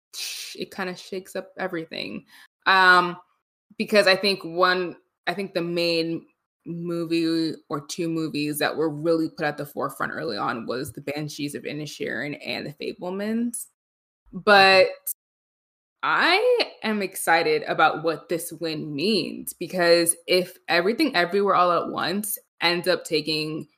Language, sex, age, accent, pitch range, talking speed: English, female, 20-39, American, 165-205 Hz, 140 wpm